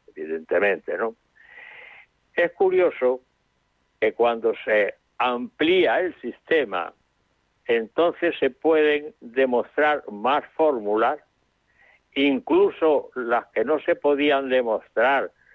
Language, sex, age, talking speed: Spanish, male, 60-79, 90 wpm